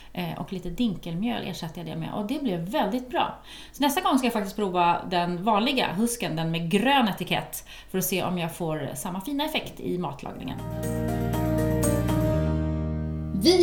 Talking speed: 165 wpm